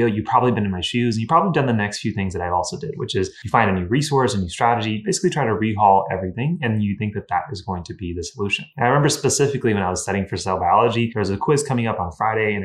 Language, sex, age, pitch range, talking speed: English, male, 20-39, 100-125 Hz, 305 wpm